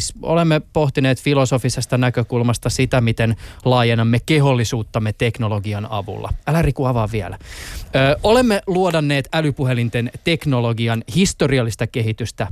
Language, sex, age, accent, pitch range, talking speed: Finnish, male, 20-39, native, 115-160 Hz, 100 wpm